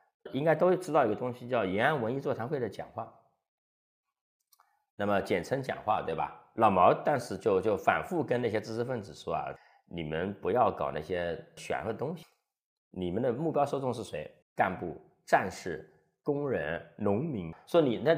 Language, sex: Chinese, male